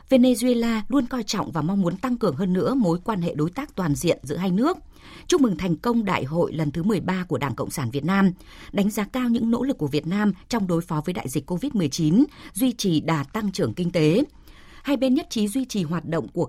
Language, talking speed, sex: Vietnamese, 250 wpm, female